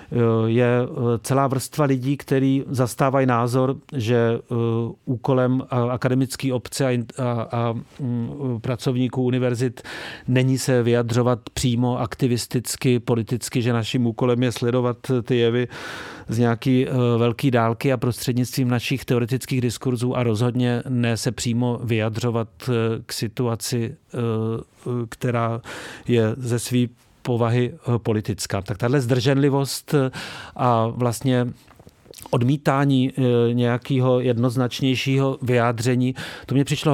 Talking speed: 105 wpm